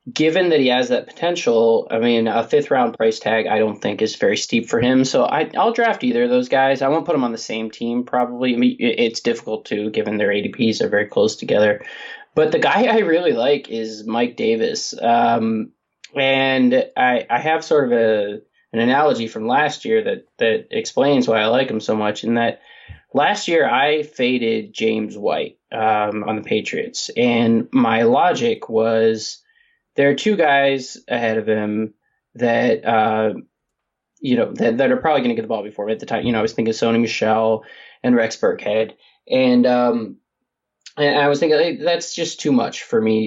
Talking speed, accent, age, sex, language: 200 wpm, American, 20-39, male, English